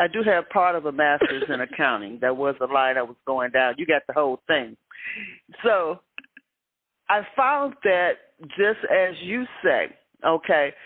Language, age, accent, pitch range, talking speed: English, 40-59, American, 165-215 Hz, 170 wpm